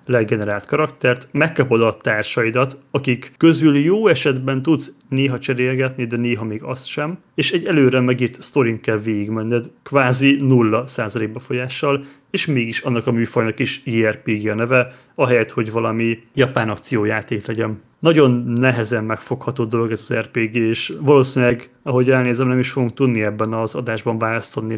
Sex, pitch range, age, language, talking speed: male, 115-135 Hz, 30-49, Hungarian, 150 wpm